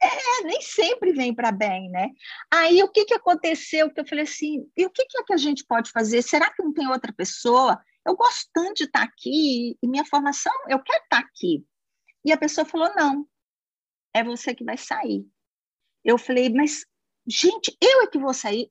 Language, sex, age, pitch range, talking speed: Portuguese, female, 50-69, 225-335 Hz, 210 wpm